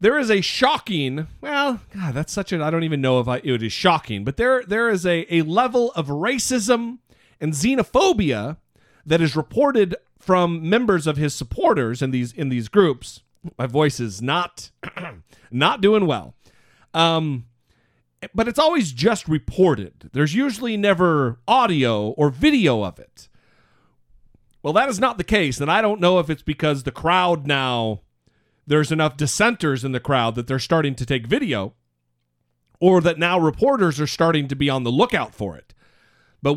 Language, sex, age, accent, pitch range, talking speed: English, male, 40-59, American, 130-190 Hz, 170 wpm